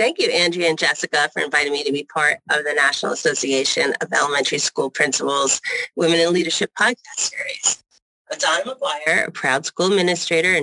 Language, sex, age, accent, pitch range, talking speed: English, female, 30-49, American, 165-225 Hz, 180 wpm